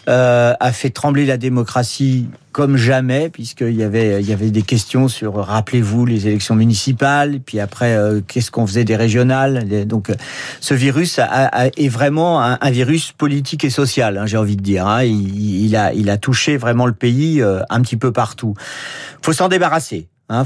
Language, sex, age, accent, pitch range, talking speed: French, male, 50-69, French, 110-145 Hz, 200 wpm